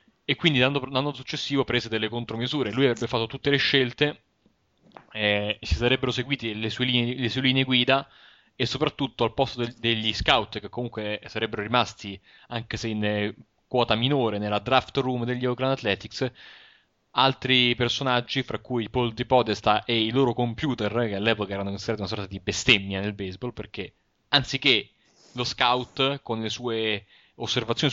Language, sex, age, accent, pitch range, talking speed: Italian, male, 20-39, native, 110-130 Hz, 160 wpm